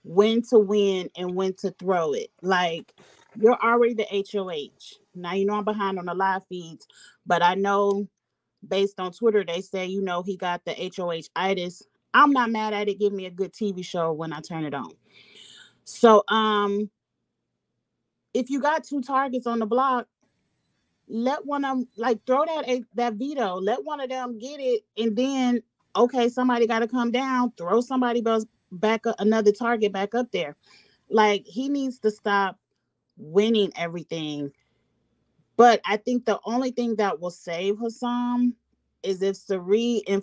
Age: 30-49